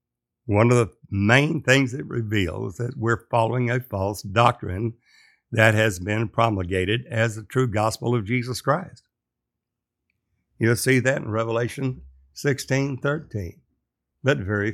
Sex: male